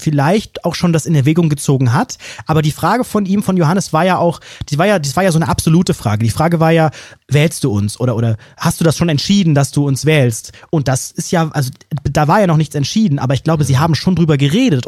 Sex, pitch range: male, 140-185 Hz